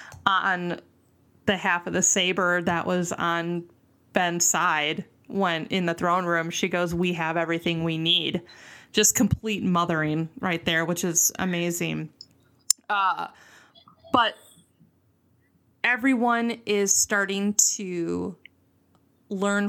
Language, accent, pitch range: English, American, 170-210 Hz